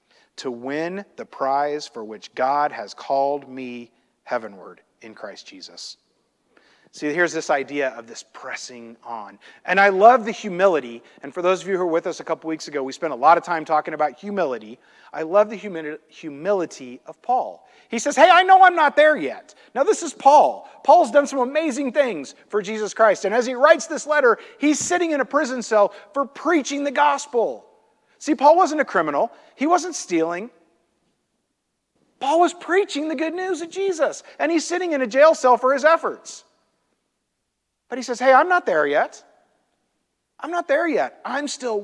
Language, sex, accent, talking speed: English, male, American, 190 wpm